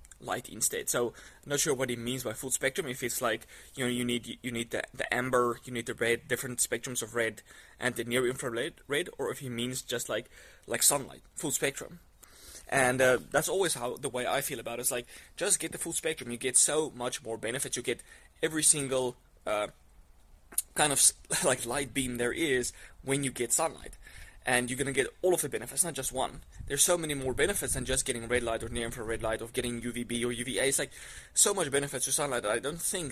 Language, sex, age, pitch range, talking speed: English, male, 20-39, 115-135 Hz, 230 wpm